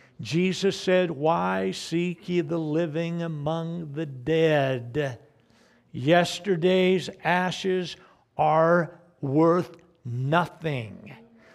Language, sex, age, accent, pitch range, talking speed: English, male, 60-79, American, 130-170 Hz, 80 wpm